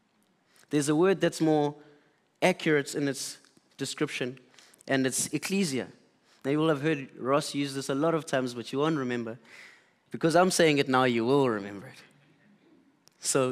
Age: 20-39